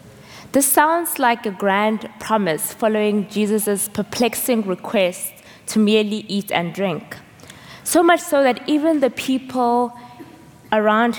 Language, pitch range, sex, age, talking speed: English, 195-245 Hz, female, 20-39, 125 wpm